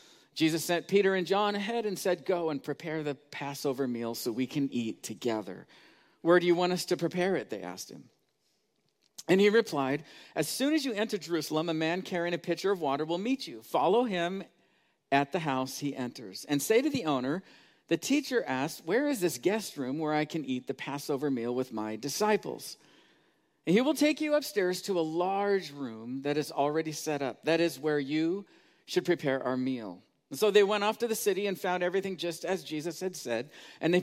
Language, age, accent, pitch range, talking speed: English, 50-69, American, 145-195 Hz, 210 wpm